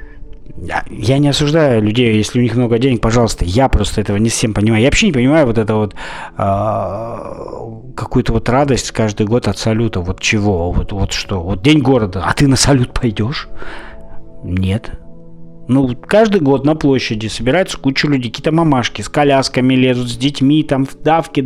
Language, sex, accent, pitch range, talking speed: Russian, male, native, 105-135 Hz, 175 wpm